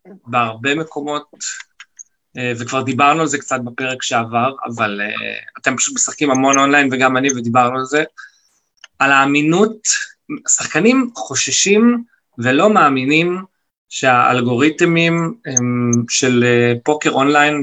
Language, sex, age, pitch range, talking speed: English, male, 20-39, 130-155 Hz, 100 wpm